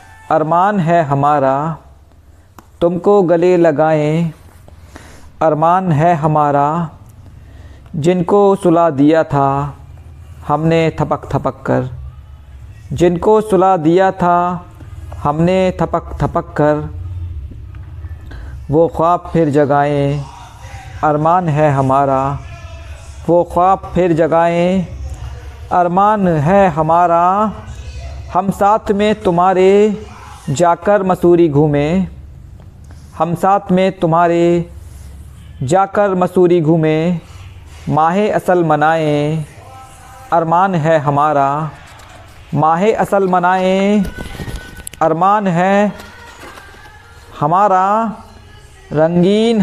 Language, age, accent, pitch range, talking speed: Hindi, 50-69, native, 115-185 Hz, 80 wpm